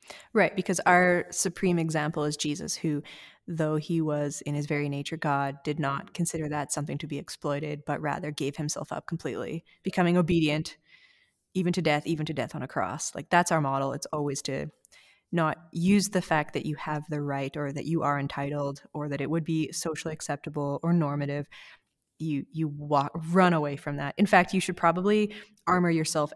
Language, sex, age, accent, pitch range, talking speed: English, female, 20-39, American, 145-175 Hz, 195 wpm